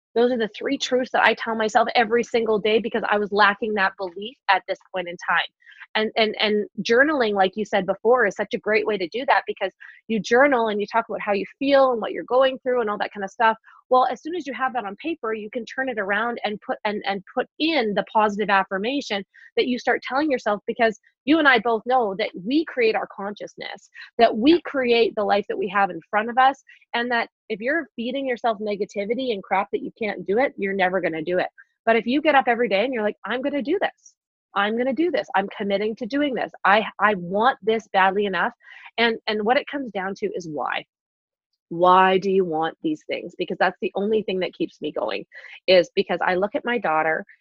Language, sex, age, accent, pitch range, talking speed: English, female, 20-39, American, 195-245 Hz, 245 wpm